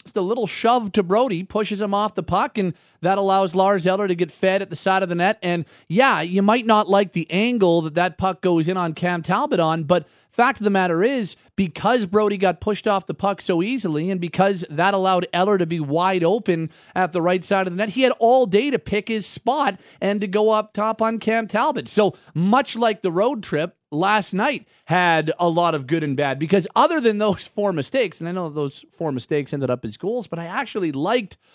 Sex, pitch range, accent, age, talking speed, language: male, 155-205 Hz, American, 30-49, 235 wpm, English